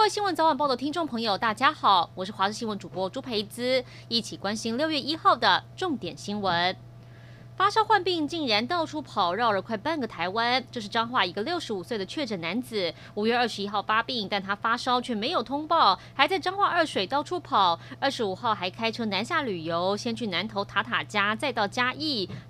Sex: female